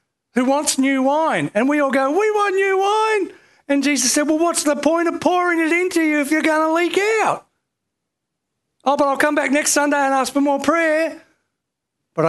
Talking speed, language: 210 wpm, English